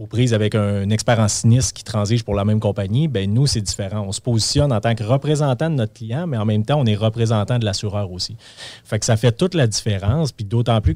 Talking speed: 255 wpm